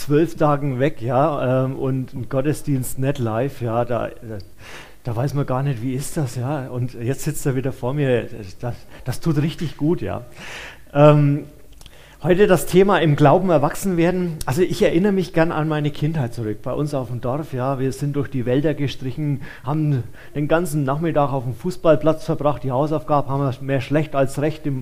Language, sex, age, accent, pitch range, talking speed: German, male, 40-59, German, 135-165 Hz, 190 wpm